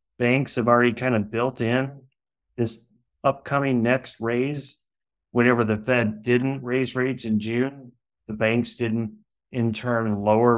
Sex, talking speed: male, 140 wpm